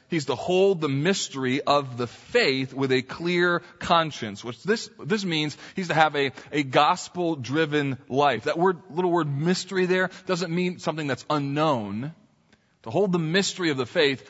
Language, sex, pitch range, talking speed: English, male, 135-180 Hz, 170 wpm